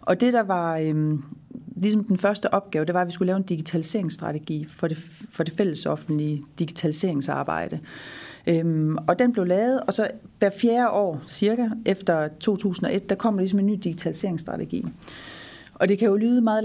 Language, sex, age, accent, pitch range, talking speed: Danish, female, 40-59, native, 165-205 Hz, 170 wpm